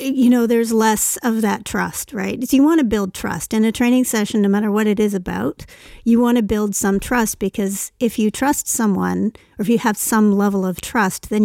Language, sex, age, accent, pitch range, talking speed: English, female, 40-59, American, 200-240 Hz, 230 wpm